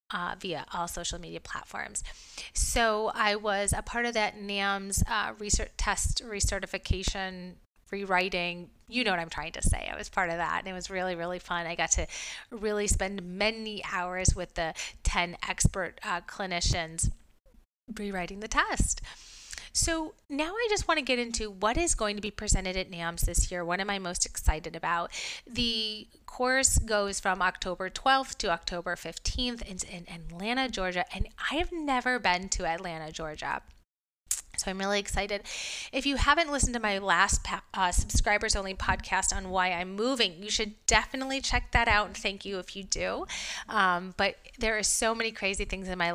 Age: 30-49